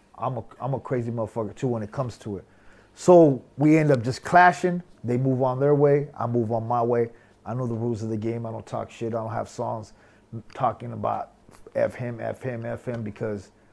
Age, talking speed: 30-49, 225 wpm